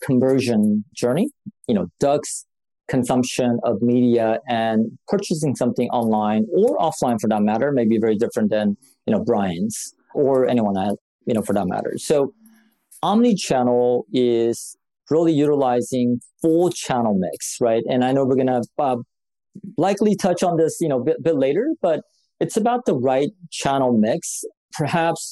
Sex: male